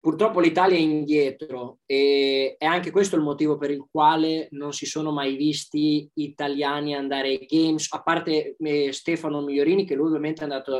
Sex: male